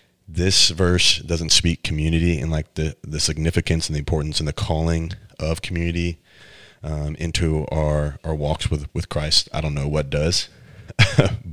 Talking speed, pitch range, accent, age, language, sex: 160 wpm, 75-85 Hz, American, 30-49, English, male